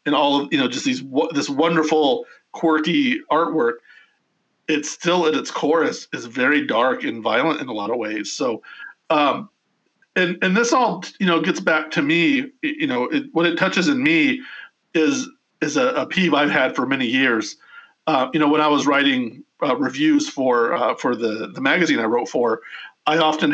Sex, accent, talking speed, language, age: male, American, 195 wpm, English, 40-59